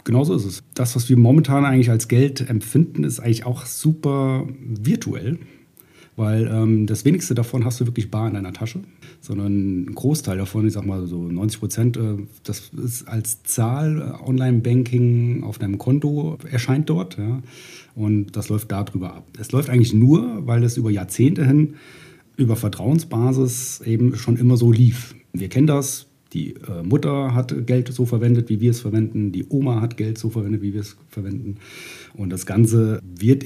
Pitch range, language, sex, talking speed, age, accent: 110-140 Hz, German, male, 180 wpm, 40-59, German